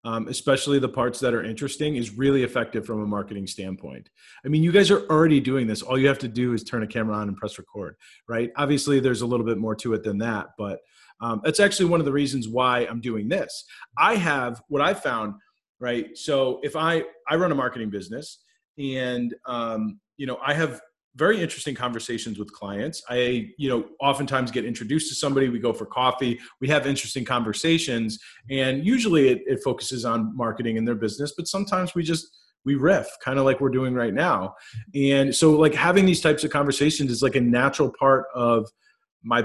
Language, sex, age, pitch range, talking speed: English, male, 30-49, 115-145 Hz, 210 wpm